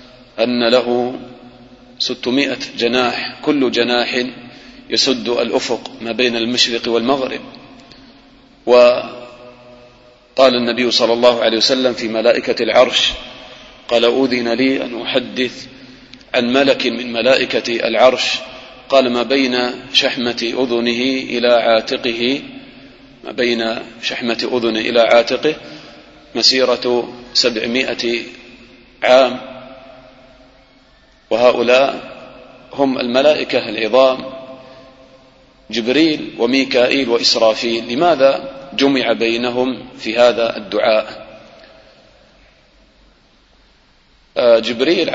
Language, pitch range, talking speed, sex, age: English, 120-130 Hz, 80 wpm, male, 40-59